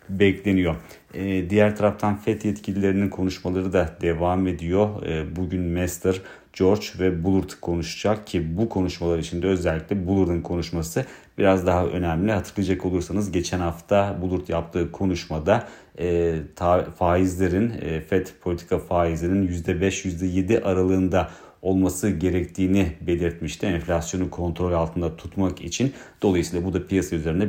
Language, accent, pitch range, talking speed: Turkish, native, 85-95 Hz, 120 wpm